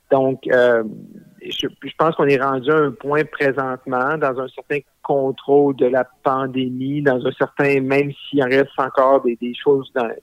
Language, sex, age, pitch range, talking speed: French, male, 50-69, 130-145 Hz, 190 wpm